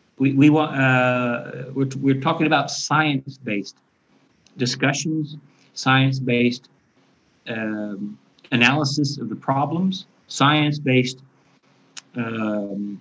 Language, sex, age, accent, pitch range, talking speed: English, male, 50-69, American, 115-135 Hz, 95 wpm